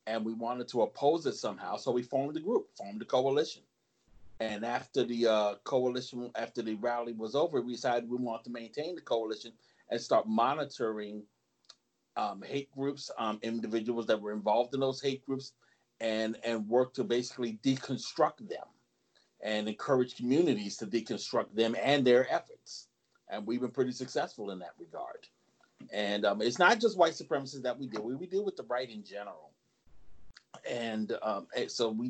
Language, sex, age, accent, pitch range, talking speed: English, male, 40-59, American, 110-130 Hz, 175 wpm